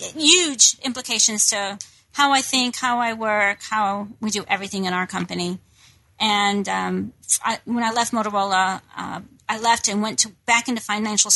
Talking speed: 160 wpm